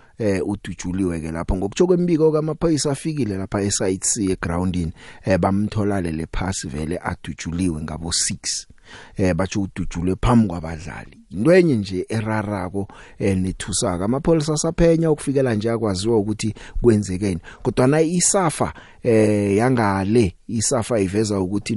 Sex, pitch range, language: male, 90-120 Hz, English